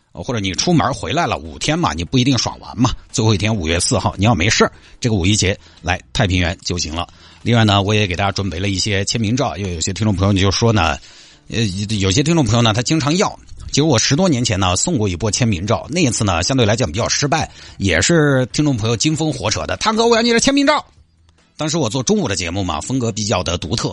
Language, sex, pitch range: Chinese, male, 90-125 Hz